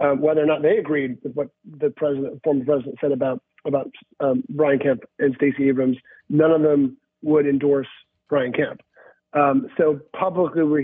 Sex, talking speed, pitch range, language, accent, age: male, 175 wpm, 140-175 Hz, English, American, 40-59